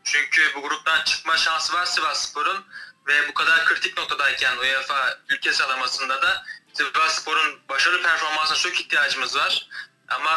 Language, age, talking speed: Turkish, 20-39, 135 wpm